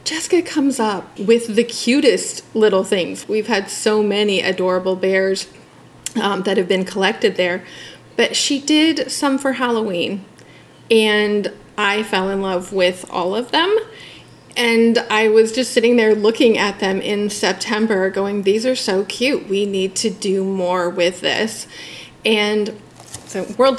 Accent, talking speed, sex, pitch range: American, 155 wpm, female, 190-230 Hz